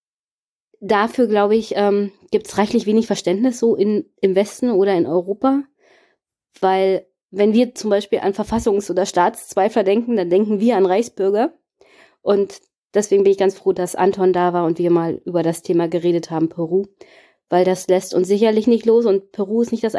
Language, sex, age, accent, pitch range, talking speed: German, female, 20-39, German, 195-240 Hz, 180 wpm